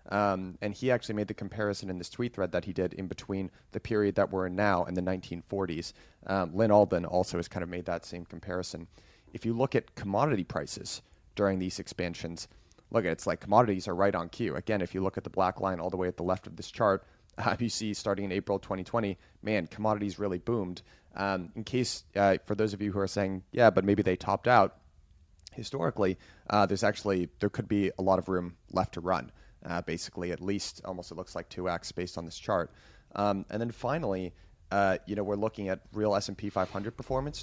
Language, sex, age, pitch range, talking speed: English, male, 30-49, 90-105 Hz, 230 wpm